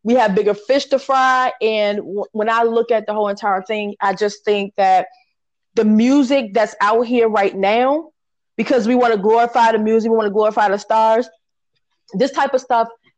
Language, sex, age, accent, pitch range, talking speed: English, female, 20-39, American, 210-250 Hz, 200 wpm